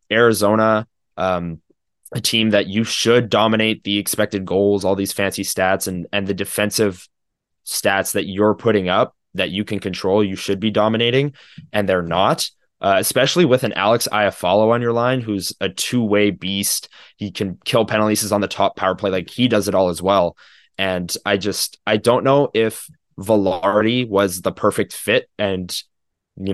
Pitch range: 95-110 Hz